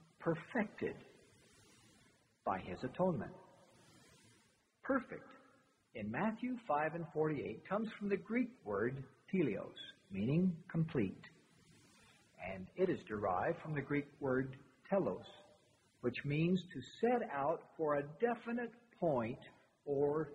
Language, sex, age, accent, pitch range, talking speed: English, male, 60-79, American, 135-215 Hz, 110 wpm